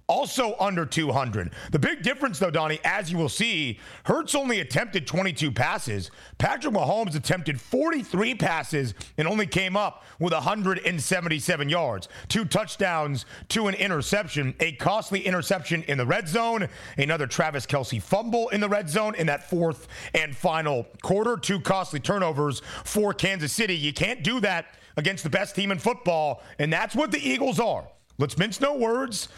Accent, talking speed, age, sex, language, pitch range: American, 165 wpm, 40-59, male, English, 155-210 Hz